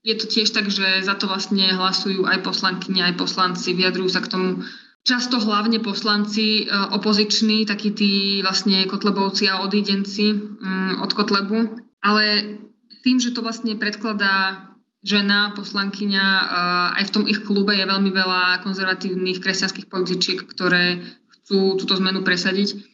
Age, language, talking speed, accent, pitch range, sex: 20-39, Czech, 145 wpm, native, 185-210 Hz, female